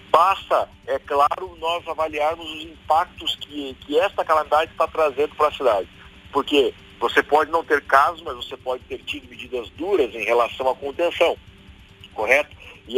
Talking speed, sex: 160 wpm, male